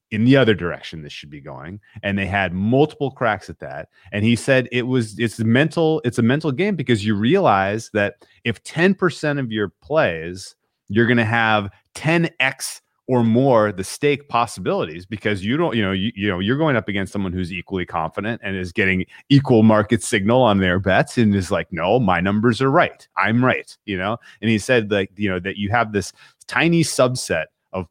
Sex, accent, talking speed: male, American, 210 wpm